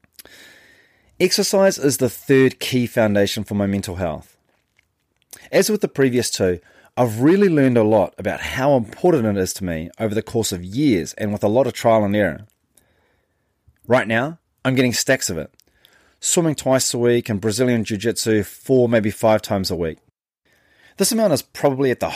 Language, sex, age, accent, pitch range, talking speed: English, male, 30-49, Australian, 105-130 Hz, 180 wpm